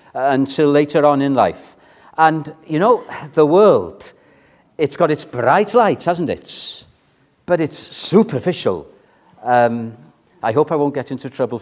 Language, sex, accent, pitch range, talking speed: English, male, British, 125-155 Hz, 145 wpm